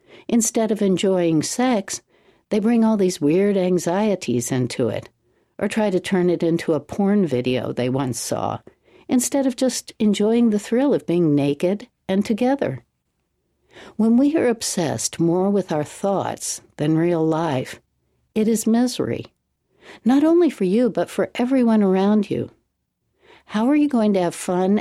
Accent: American